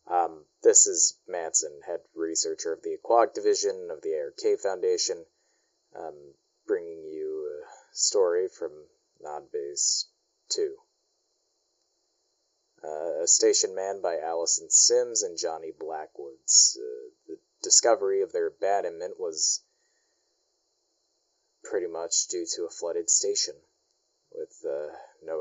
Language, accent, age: English, American, 20-39